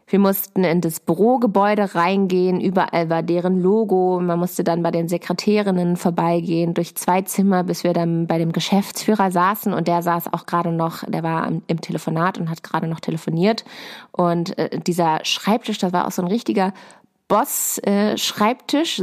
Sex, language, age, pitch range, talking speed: female, German, 20-39, 170-210 Hz, 165 wpm